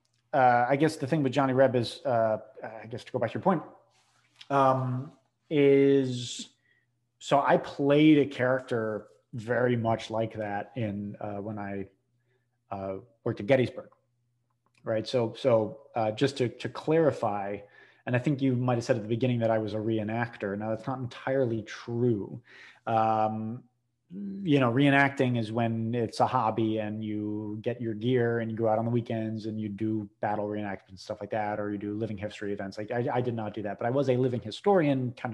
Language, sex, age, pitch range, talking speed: English, male, 30-49, 110-130 Hz, 195 wpm